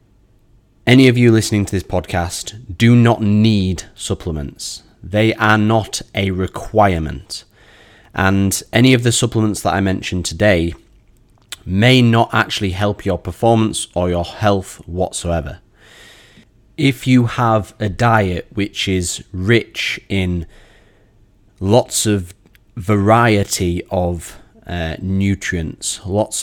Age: 30-49